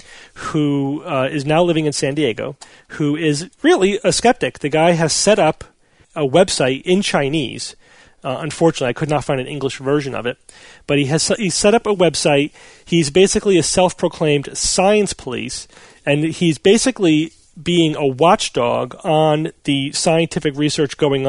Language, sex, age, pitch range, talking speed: English, male, 40-59, 130-165 Hz, 165 wpm